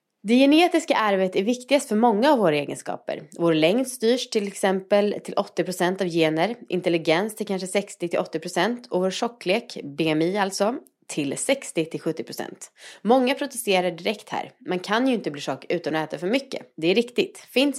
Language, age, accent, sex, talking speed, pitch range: English, 30-49, Swedish, female, 165 wpm, 155-225 Hz